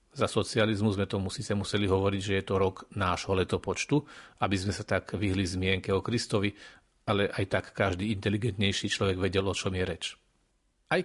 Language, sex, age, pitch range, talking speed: Slovak, male, 40-59, 100-120 Hz, 175 wpm